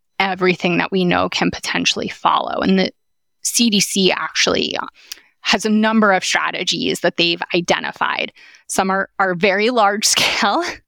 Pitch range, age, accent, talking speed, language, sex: 180-205 Hz, 20-39, American, 140 wpm, English, female